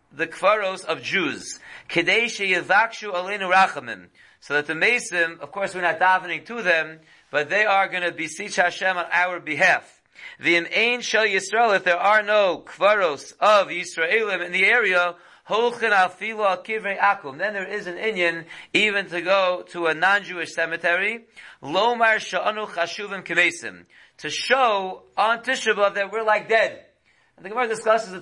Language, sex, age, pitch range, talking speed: English, male, 40-59, 165-210 Hz, 135 wpm